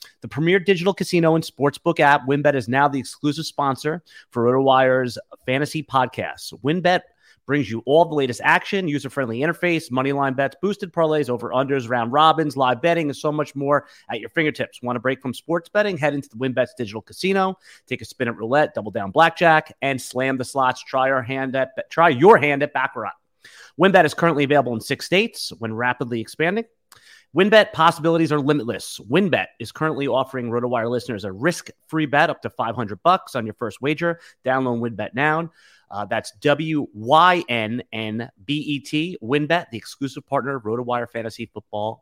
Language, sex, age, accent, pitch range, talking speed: English, male, 30-49, American, 125-155 Hz, 175 wpm